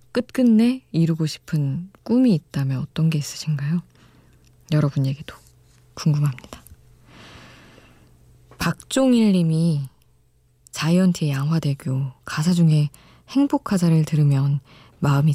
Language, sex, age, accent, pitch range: Korean, female, 20-39, native, 140-170 Hz